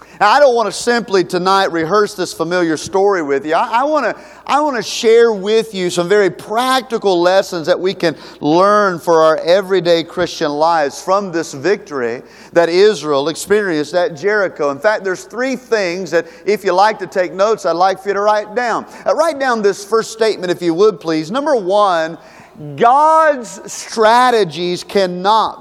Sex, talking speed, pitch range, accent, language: male, 175 wpm, 180-240 Hz, American, English